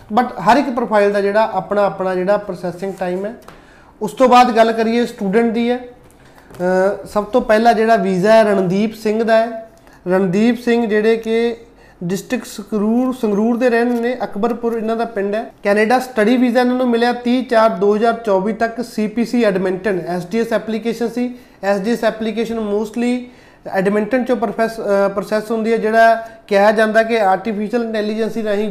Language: Punjabi